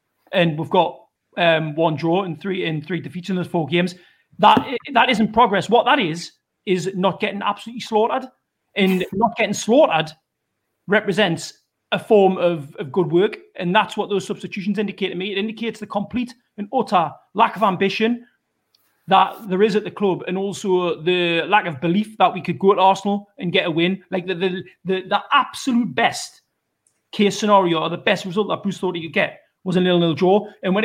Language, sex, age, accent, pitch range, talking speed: English, male, 30-49, British, 175-210 Hz, 200 wpm